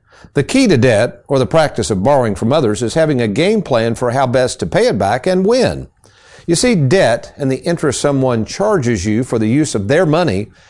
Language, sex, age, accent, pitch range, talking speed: English, male, 50-69, American, 115-165 Hz, 225 wpm